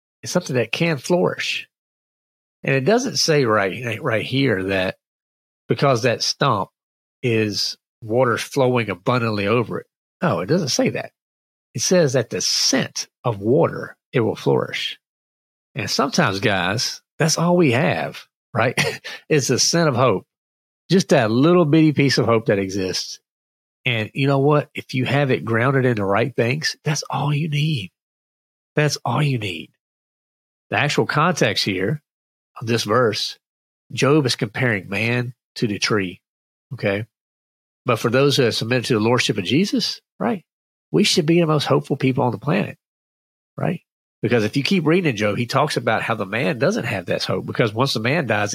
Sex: male